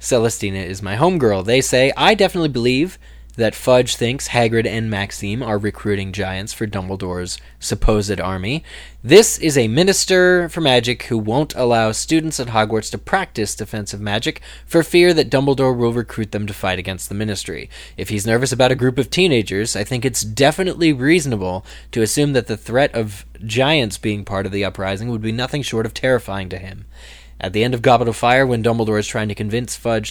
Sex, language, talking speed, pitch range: male, English, 195 wpm, 100-130 Hz